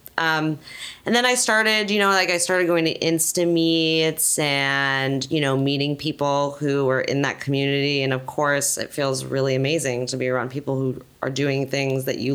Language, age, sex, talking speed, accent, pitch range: English, 20-39, female, 200 wpm, American, 130-150 Hz